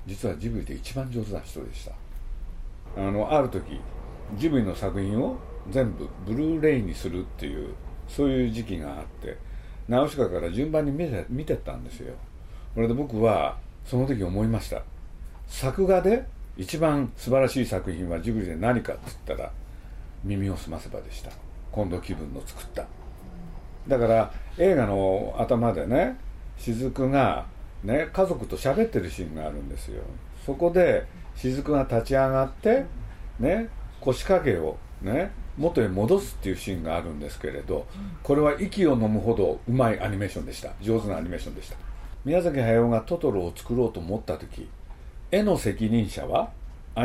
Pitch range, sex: 90-140 Hz, male